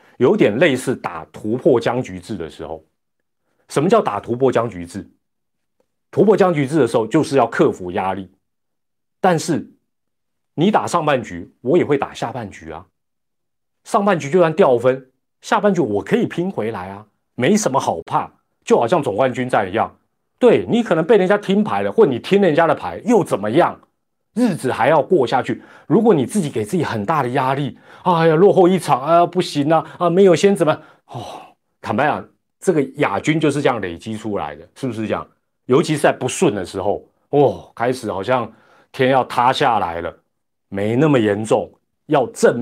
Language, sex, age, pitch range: Chinese, male, 30-49, 105-175 Hz